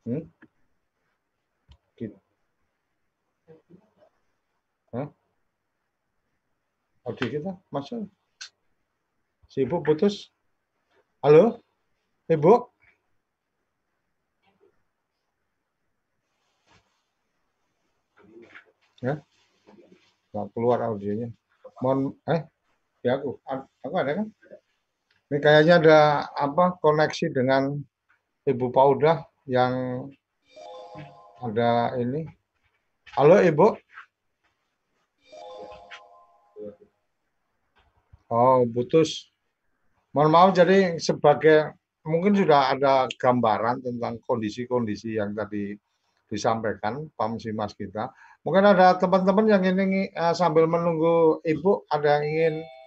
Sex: male